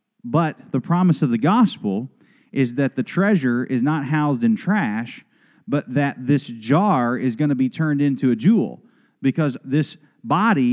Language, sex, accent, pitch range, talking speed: English, male, American, 135-215 Hz, 170 wpm